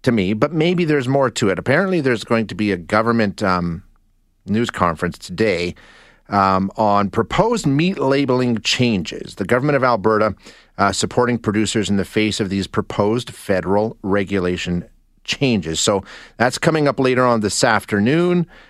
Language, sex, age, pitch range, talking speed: English, male, 40-59, 100-135 Hz, 155 wpm